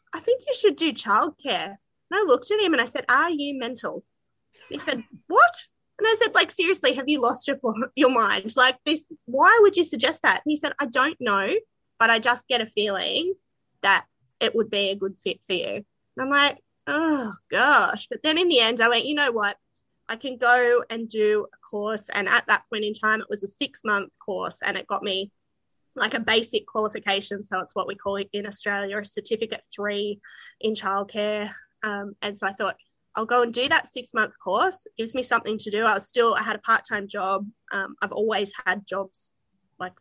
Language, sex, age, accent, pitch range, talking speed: English, female, 20-39, Australian, 205-260 Hz, 220 wpm